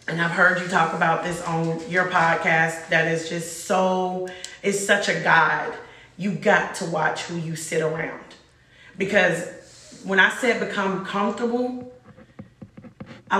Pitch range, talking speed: 175-220 Hz, 150 wpm